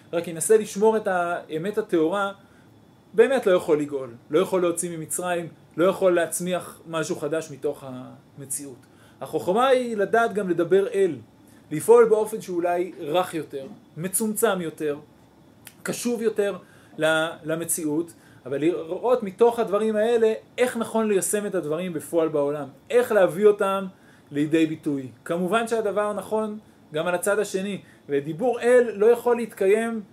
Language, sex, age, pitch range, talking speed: Hebrew, male, 30-49, 155-215 Hz, 130 wpm